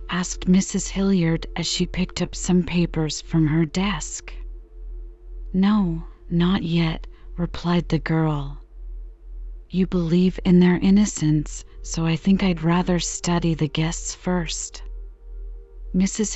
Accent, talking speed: American, 120 wpm